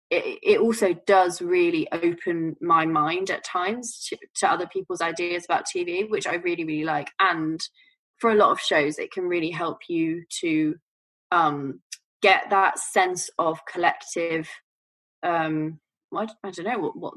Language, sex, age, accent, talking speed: English, female, 20-39, British, 150 wpm